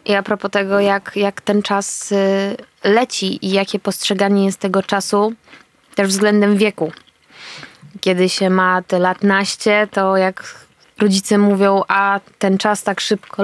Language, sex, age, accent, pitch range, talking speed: Polish, female, 20-39, native, 200-230 Hz, 145 wpm